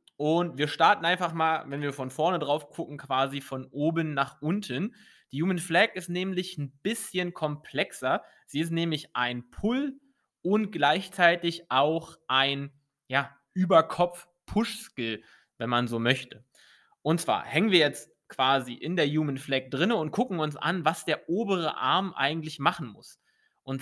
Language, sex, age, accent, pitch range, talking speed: English, male, 20-39, German, 135-180 Hz, 155 wpm